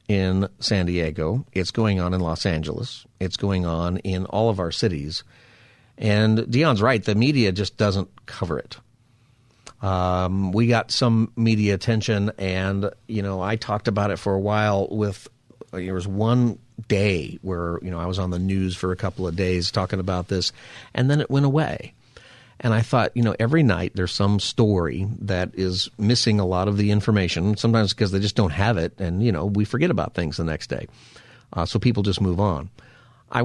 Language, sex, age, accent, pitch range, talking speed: English, male, 50-69, American, 95-115 Hz, 195 wpm